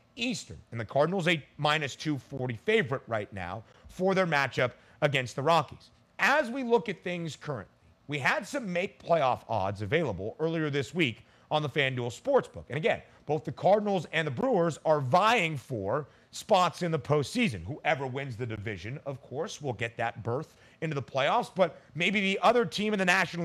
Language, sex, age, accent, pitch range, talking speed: English, male, 40-59, American, 125-180 Hz, 185 wpm